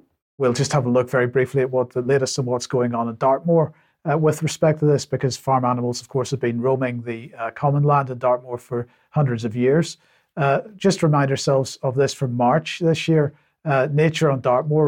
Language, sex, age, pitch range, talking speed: English, male, 50-69, 125-140 Hz, 220 wpm